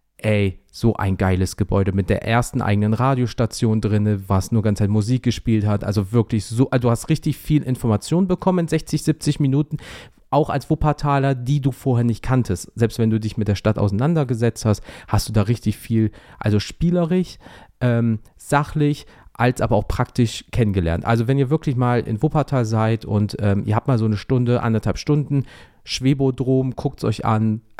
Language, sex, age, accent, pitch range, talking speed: German, male, 40-59, German, 105-140 Hz, 185 wpm